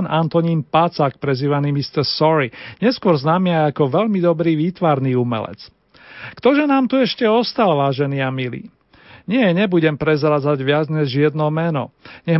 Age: 40-59